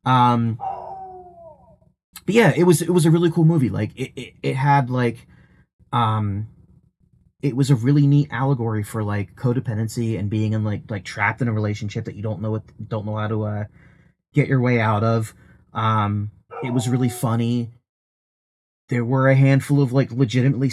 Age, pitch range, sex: 30-49, 110-140 Hz, male